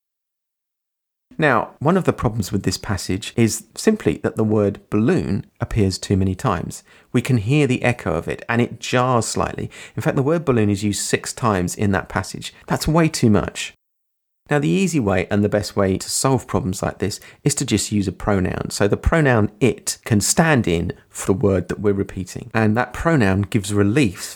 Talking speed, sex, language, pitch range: 200 wpm, male, English, 100-145 Hz